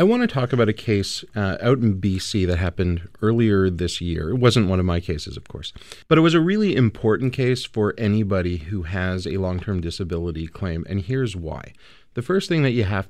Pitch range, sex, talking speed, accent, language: 90-120 Hz, male, 220 wpm, American, English